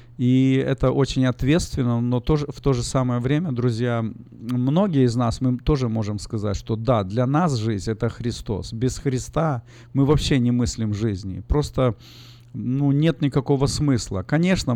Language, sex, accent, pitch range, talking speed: Russian, male, native, 115-135 Hz, 155 wpm